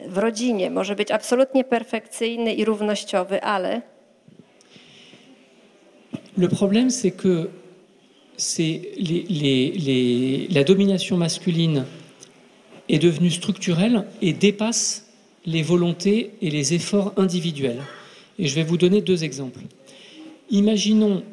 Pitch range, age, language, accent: 165-205 Hz, 40-59, Polish, French